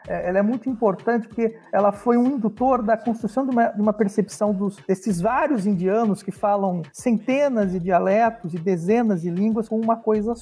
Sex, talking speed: male, 185 wpm